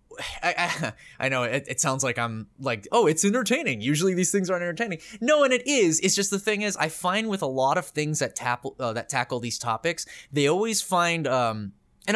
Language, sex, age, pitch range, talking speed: English, male, 20-39, 130-190 Hz, 215 wpm